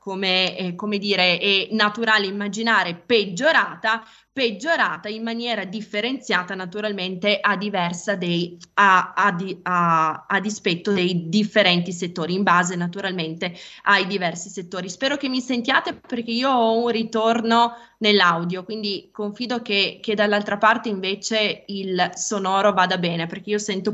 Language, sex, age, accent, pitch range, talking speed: Italian, female, 20-39, native, 185-225 Hz, 135 wpm